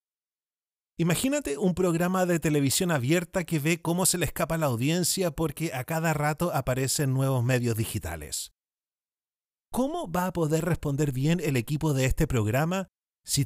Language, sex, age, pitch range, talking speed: Spanish, male, 30-49, 130-175 Hz, 155 wpm